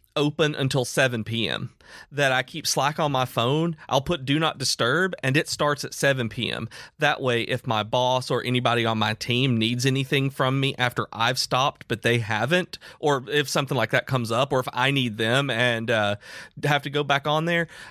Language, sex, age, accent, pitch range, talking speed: English, male, 30-49, American, 110-135 Hz, 210 wpm